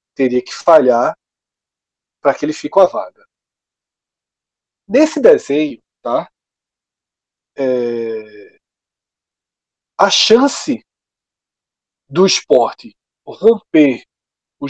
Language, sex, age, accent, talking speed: Portuguese, male, 40-59, Brazilian, 80 wpm